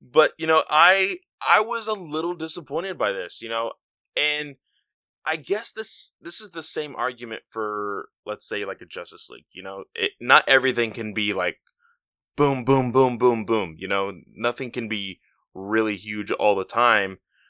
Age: 20-39